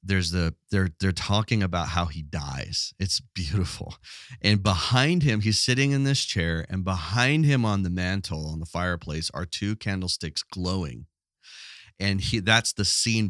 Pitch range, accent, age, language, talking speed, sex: 90-115 Hz, American, 40-59, English, 165 wpm, male